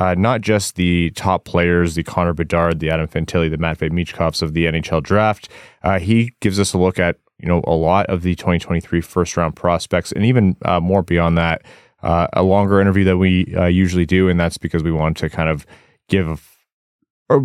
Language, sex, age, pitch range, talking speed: English, male, 20-39, 85-100 Hz, 215 wpm